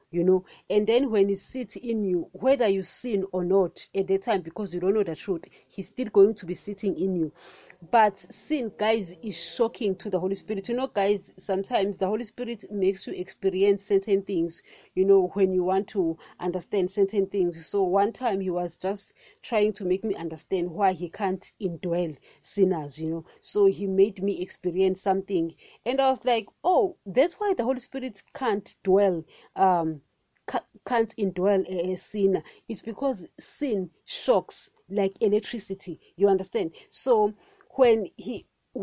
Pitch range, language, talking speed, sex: 185-230 Hz, English, 175 wpm, female